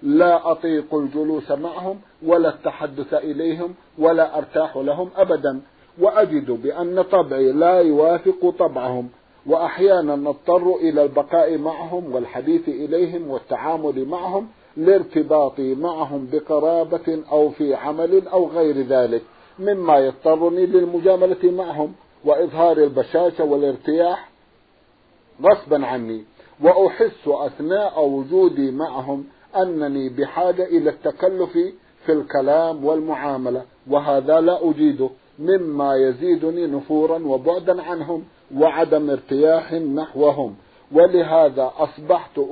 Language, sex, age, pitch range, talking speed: Arabic, male, 50-69, 145-180 Hz, 95 wpm